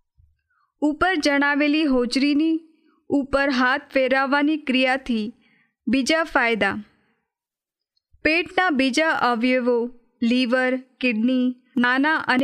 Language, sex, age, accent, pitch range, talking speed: Hindi, female, 20-39, native, 235-290 Hz, 70 wpm